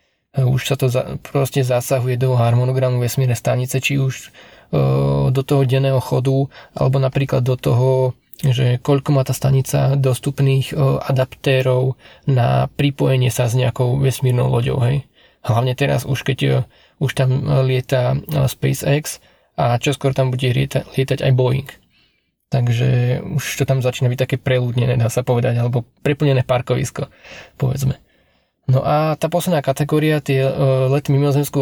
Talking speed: 150 wpm